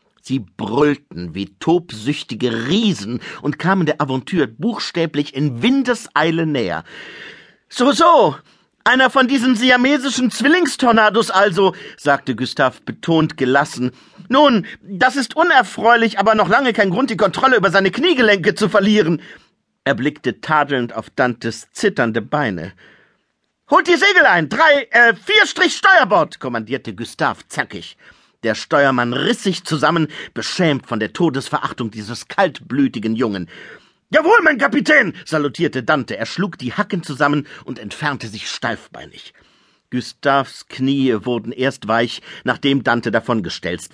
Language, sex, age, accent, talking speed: German, male, 50-69, German, 130 wpm